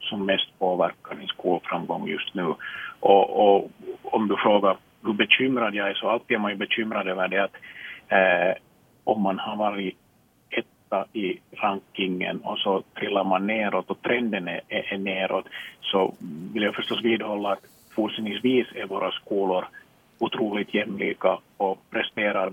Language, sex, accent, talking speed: Swedish, male, Finnish, 155 wpm